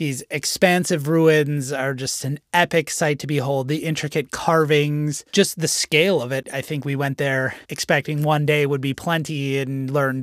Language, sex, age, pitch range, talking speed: English, male, 30-49, 140-160 Hz, 180 wpm